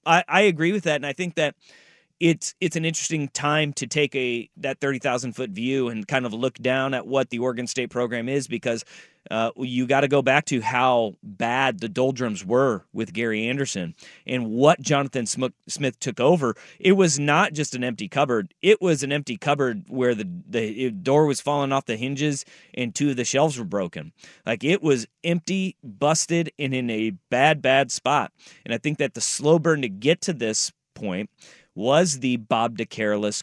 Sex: male